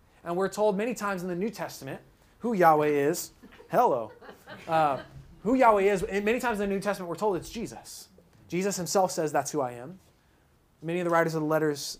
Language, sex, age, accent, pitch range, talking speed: English, male, 20-39, American, 155-215 Hz, 205 wpm